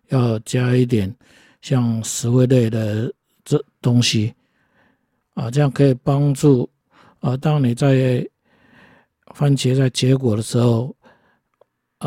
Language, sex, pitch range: Chinese, male, 120-150 Hz